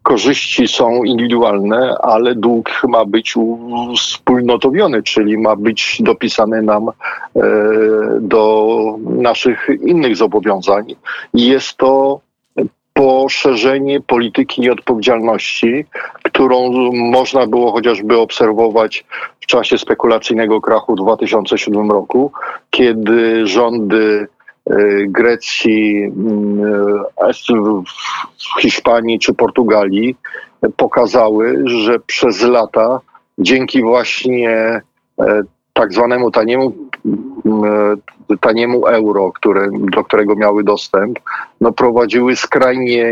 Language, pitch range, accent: Polish, 105-120 Hz, native